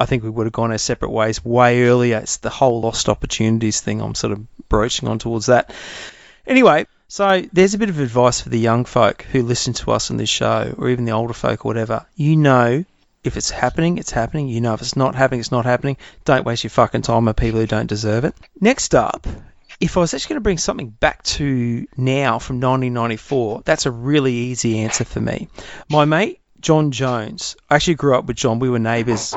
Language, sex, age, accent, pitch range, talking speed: English, male, 30-49, Australian, 115-145 Hz, 225 wpm